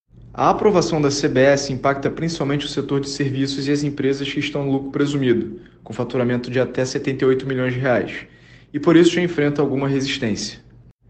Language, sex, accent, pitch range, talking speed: Portuguese, male, Brazilian, 130-150 Hz, 175 wpm